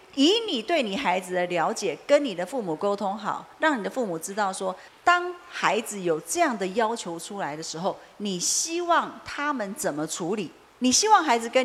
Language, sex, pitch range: Chinese, female, 185-285 Hz